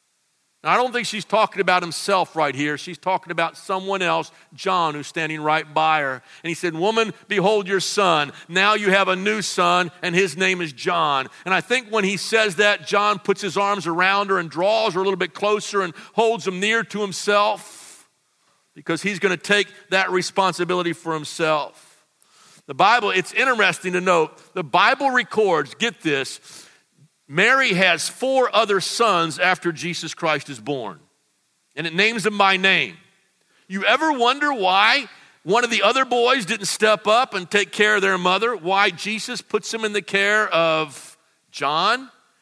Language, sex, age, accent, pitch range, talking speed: English, male, 50-69, American, 170-210 Hz, 180 wpm